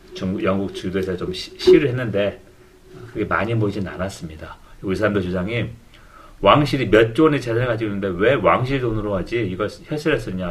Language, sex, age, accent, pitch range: Korean, male, 40-59, native, 95-150 Hz